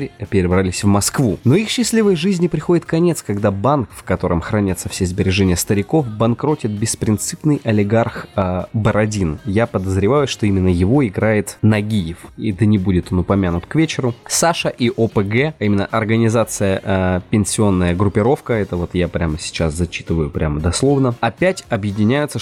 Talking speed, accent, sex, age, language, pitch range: 150 wpm, native, male, 20-39, Russian, 95-120 Hz